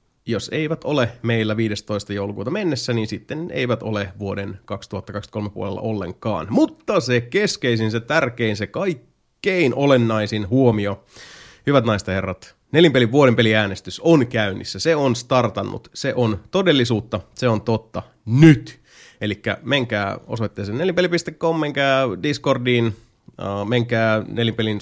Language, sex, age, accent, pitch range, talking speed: Finnish, male, 30-49, native, 105-130 Hz, 120 wpm